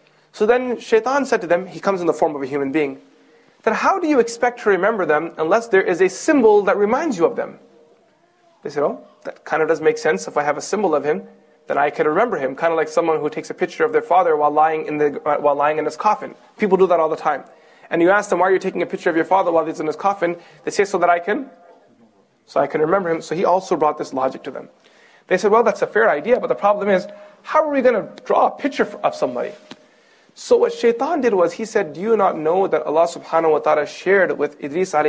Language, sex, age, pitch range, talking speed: English, male, 30-49, 150-215 Hz, 270 wpm